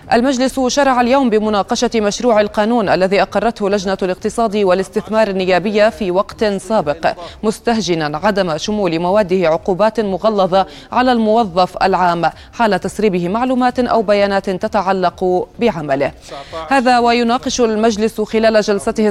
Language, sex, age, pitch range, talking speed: Arabic, female, 20-39, 175-225 Hz, 115 wpm